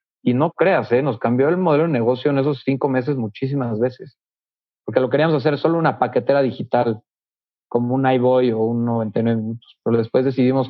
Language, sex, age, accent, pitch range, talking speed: Spanish, male, 40-59, Mexican, 115-135 Hz, 195 wpm